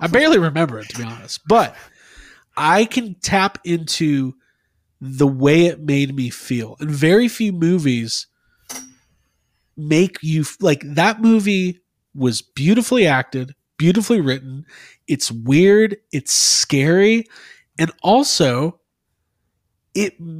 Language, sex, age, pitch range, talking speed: English, male, 30-49, 130-185 Hz, 115 wpm